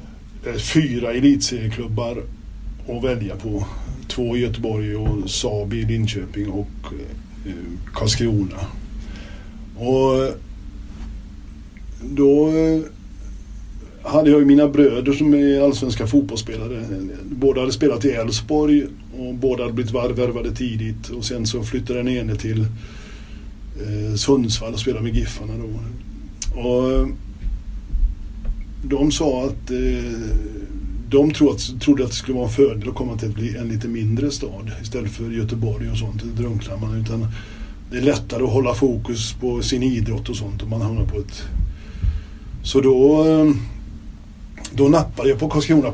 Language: Swedish